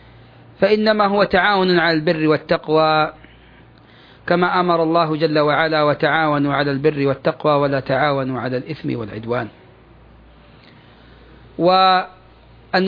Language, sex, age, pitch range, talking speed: Arabic, male, 40-59, 150-185 Hz, 100 wpm